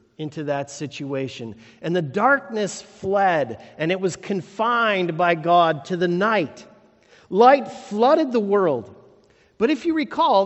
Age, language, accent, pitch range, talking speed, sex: 50-69, English, American, 165-220 Hz, 140 wpm, male